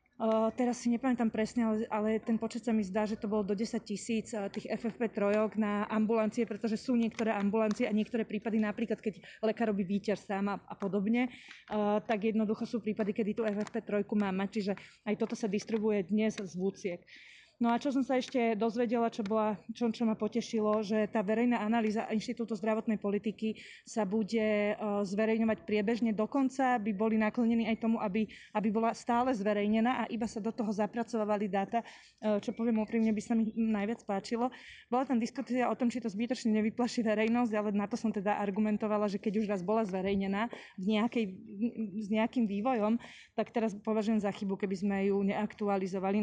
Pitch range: 210-230 Hz